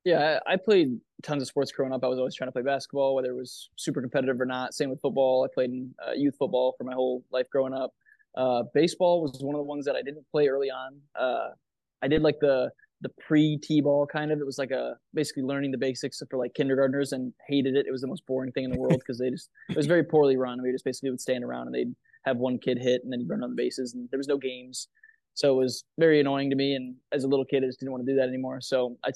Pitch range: 130-145 Hz